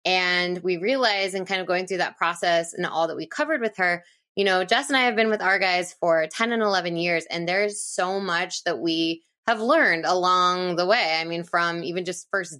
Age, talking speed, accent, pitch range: 20-39, 235 wpm, American, 165-195 Hz